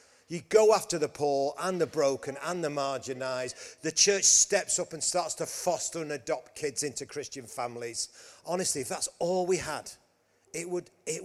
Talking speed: 175 wpm